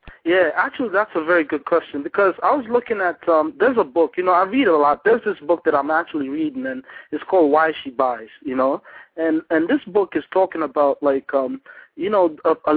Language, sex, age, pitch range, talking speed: English, male, 20-39, 140-195 Hz, 235 wpm